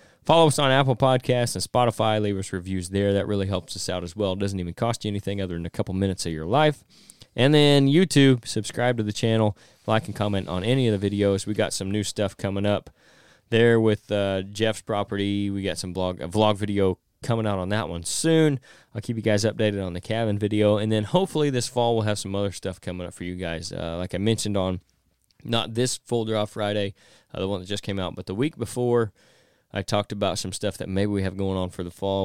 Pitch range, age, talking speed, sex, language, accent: 90-115 Hz, 20-39, 245 wpm, male, English, American